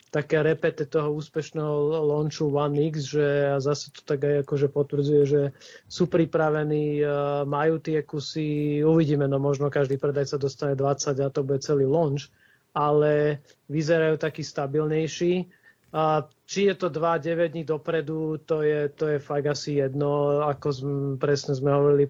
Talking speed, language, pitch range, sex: 150 wpm, Slovak, 145-160 Hz, male